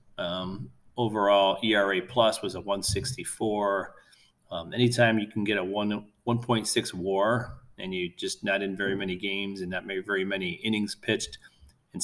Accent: American